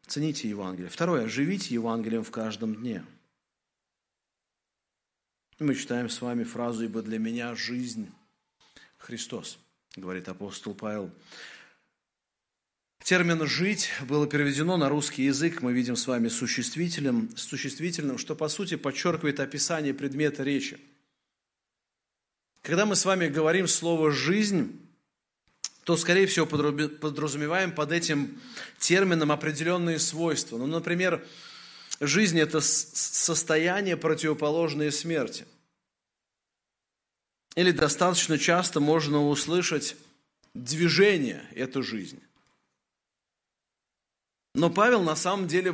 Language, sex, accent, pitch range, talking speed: Russian, male, native, 140-180 Hz, 100 wpm